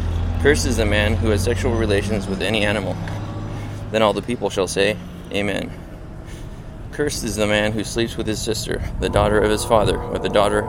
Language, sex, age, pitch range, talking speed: English, male, 20-39, 95-110 Hz, 195 wpm